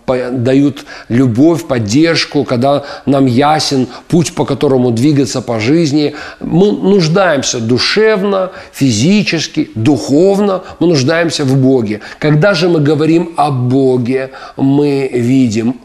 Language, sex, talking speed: Russian, male, 110 wpm